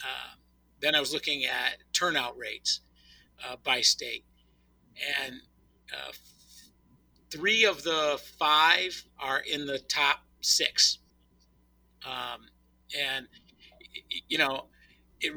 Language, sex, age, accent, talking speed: English, male, 50-69, American, 110 wpm